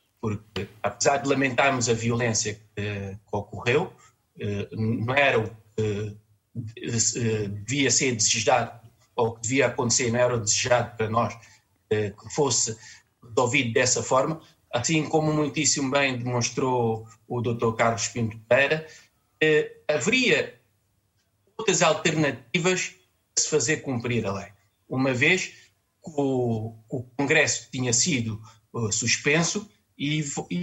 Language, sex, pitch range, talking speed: Portuguese, male, 115-155 Hz, 120 wpm